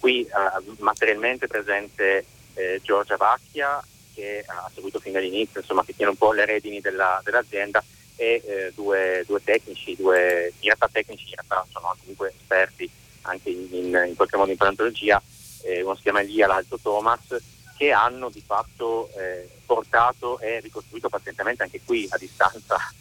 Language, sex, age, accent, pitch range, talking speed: Italian, male, 30-49, native, 95-135 Hz, 160 wpm